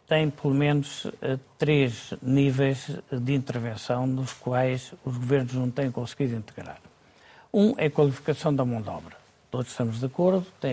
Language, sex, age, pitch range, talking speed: Portuguese, male, 50-69, 120-150 Hz, 155 wpm